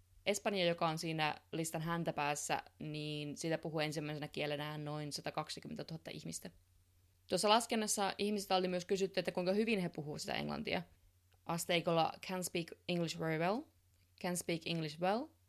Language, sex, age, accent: Finnish, female, 20-39, native